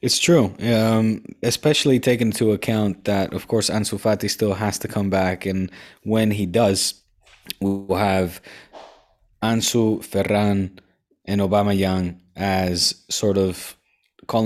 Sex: male